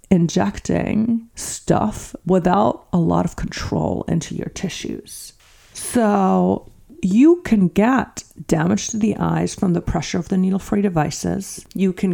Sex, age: female, 40-59